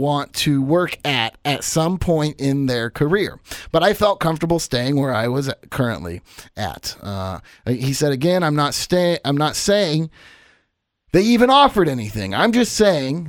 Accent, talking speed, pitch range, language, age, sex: American, 160 wpm, 135-195 Hz, English, 30-49, male